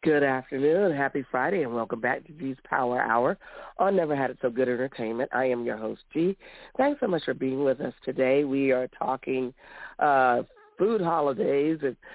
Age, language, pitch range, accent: 50-69, English, 130-155 Hz, American